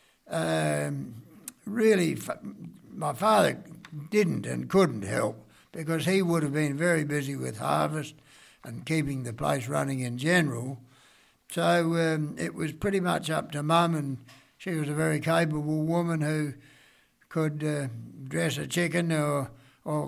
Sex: male